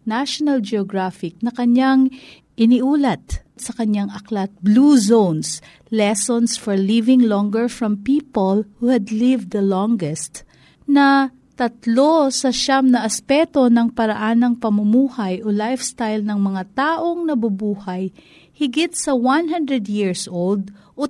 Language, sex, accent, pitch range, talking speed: Filipino, female, native, 195-265 Hz, 120 wpm